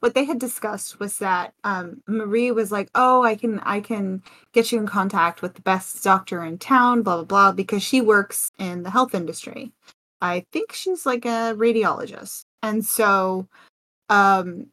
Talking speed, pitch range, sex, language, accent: 180 wpm, 185-230 Hz, female, English, American